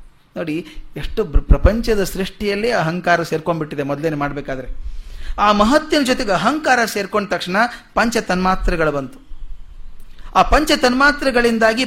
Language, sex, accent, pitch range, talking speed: Kannada, male, native, 155-225 Hz, 105 wpm